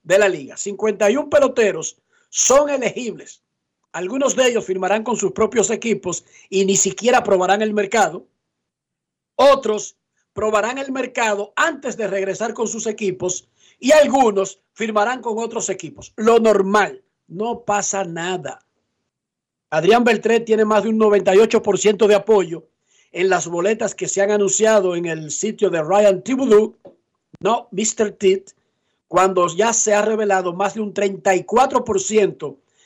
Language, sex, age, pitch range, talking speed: Spanish, male, 50-69, 190-225 Hz, 140 wpm